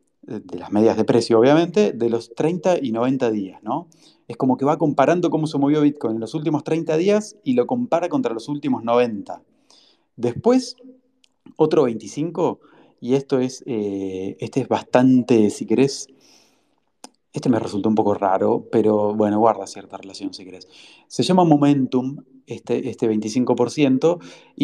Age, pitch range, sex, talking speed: 30-49, 115-160 Hz, male, 155 wpm